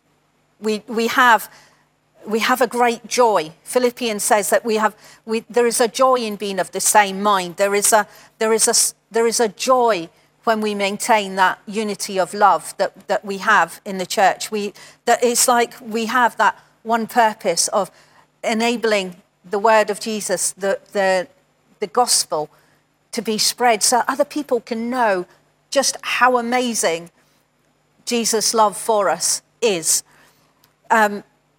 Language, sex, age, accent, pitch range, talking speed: English, female, 50-69, British, 195-235 Hz, 160 wpm